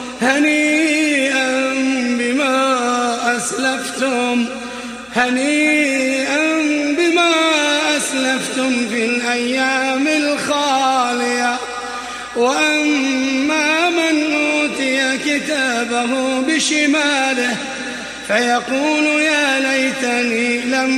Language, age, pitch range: Arabic, 30-49, 245-300 Hz